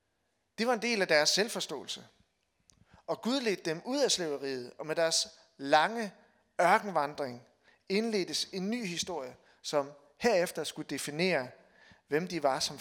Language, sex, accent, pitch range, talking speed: Danish, male, native, 145-195 Hz, 145 wpm